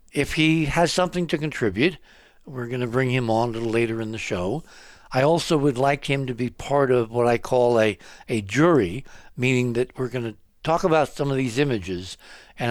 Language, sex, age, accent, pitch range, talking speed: English, male, 60-79, American, 115-145 Hz, 205 wpm